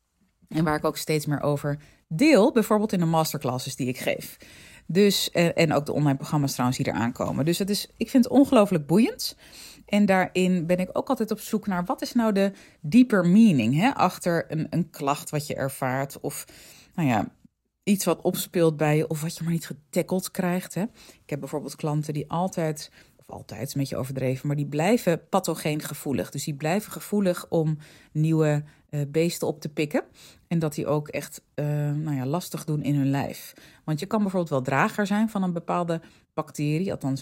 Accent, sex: Dutch, female